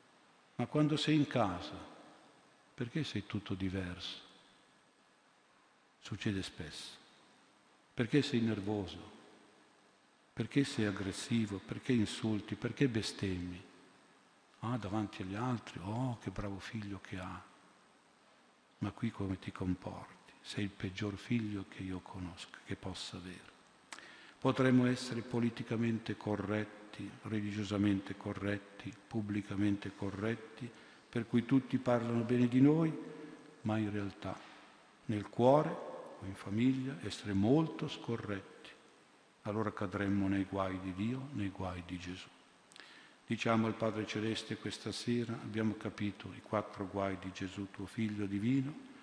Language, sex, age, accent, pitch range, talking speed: Italian, male, 50-69, native, 95-120 Hz, 120 wpm